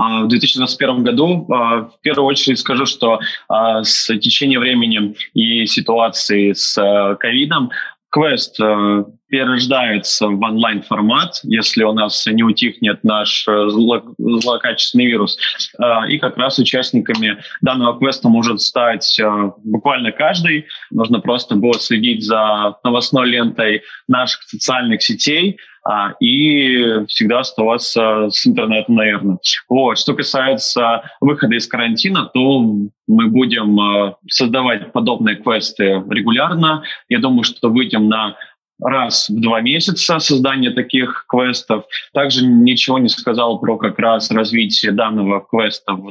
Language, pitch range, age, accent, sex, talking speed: Russian, 110-135 Hz, 20-39, native, male, 115 wpm